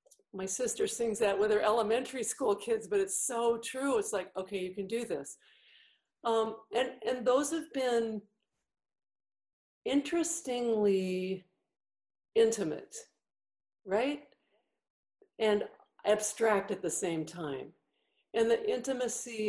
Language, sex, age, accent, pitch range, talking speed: English, female, 50-69, American, 190-255 Hz, 115 wpm